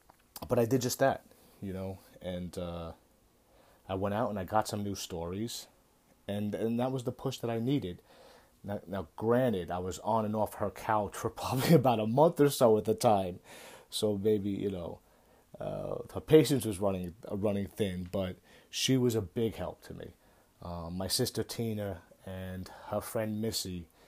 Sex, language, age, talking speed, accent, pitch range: male, English, 30-49, 185 wpm, American, 90-110 Hz